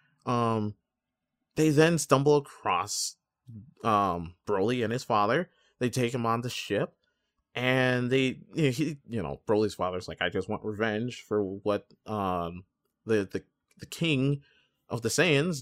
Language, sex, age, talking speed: English, male, 20-39, 155 wpm